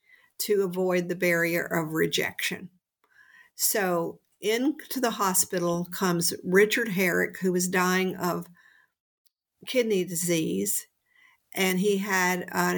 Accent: American